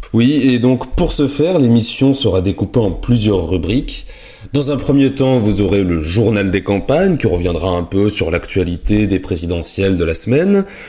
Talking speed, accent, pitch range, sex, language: 180 wpm, French, 95-125 Hz, male, French